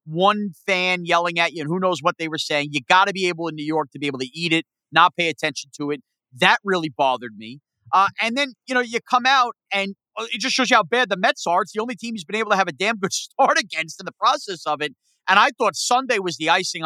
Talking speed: 280 wpm